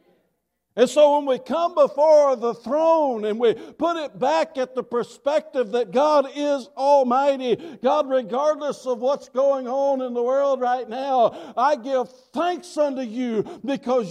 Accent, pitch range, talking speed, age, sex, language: American, 200-285 Hz, 155 wpm, 60-79, male, English